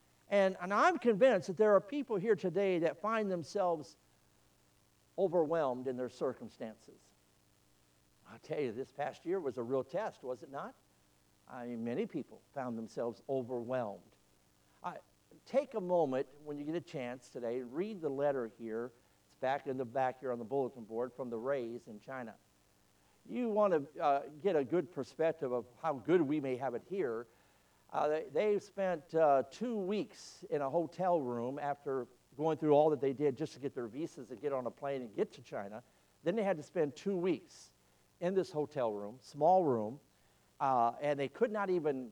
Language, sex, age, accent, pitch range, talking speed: English, male, 50-69, American, 120-170 Hz, 190 wpm